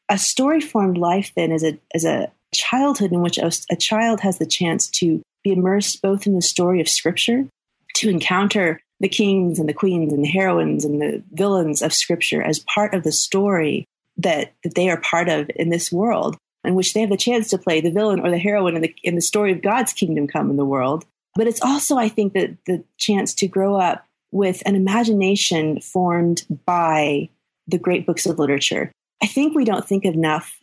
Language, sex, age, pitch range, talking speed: English, female, 30-49, 160-195 Hz, 215 wpm